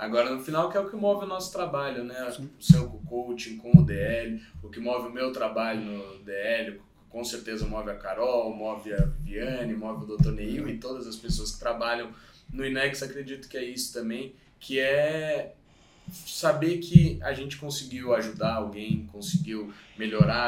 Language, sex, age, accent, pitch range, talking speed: Portuguese, male, 20-39, Brazilian, 110-150 Hz, 180 wpm